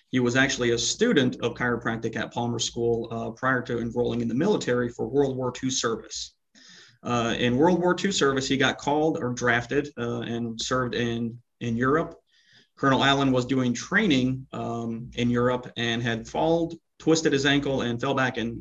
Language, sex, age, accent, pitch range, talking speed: English, male, 30-49, American, 115-135 Hz, 185 wpm